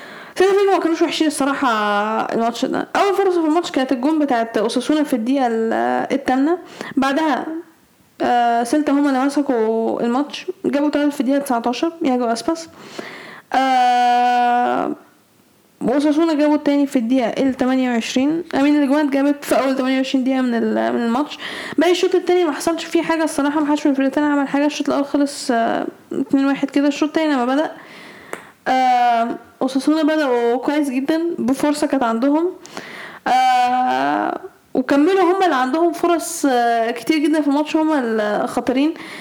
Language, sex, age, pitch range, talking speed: Arabic, female, 10-29, 255-320 Hz, 145 wpm